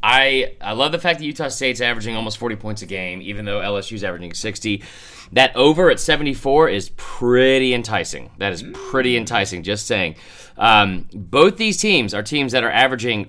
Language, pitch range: English, 100-125 Hz